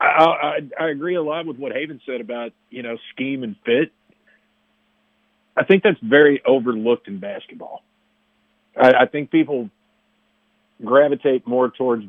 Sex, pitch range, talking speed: male, 120-160 Hz, 150 wpm